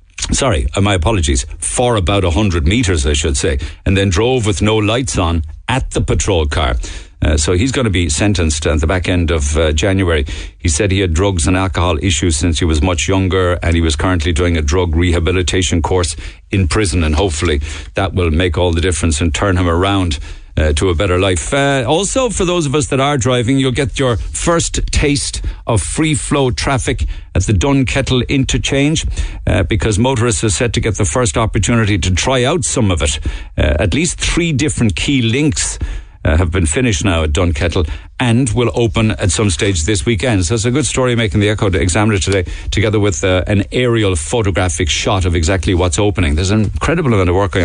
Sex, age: male, 50-69